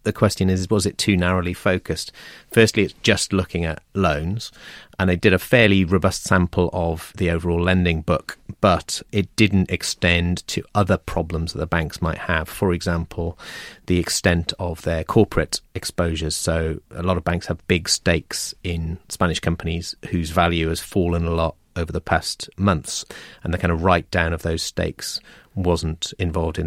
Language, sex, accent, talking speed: English, male, British, 180 wpm